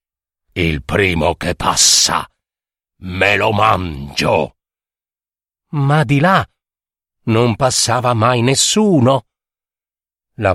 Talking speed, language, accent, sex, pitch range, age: 85 wpm, Italian, native, male, 95-145 Hz, 50-69